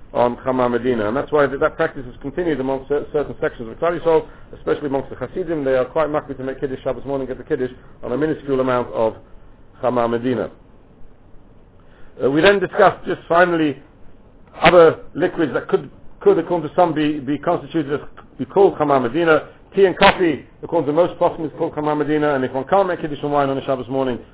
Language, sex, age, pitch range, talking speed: English, male, 60-79, 125-160 Hz, 200 wpm